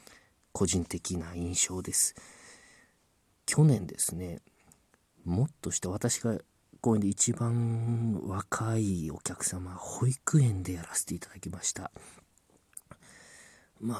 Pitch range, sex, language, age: 90-115 Hz, male, Japanese, 40-59